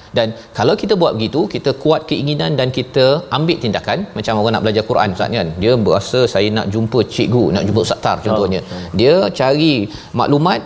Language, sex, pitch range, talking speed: Malayalam, male, 110-145 Hz, 185 wpm